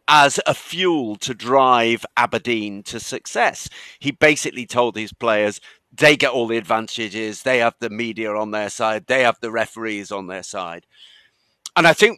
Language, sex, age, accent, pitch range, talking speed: English, male, 50-69, British, 110-145 Hz, 170 wpm